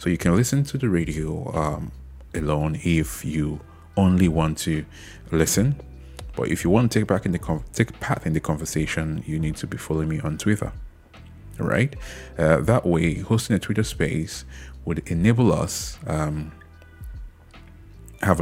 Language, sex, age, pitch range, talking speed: English, male, 30-49, 75-90 Hz, 165 wpm